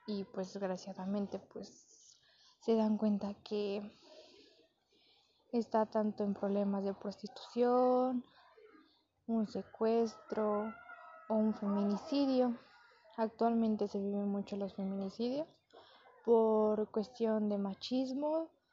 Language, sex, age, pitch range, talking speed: Spanish, female, 20-39, 210-255 Hz, 95 wpm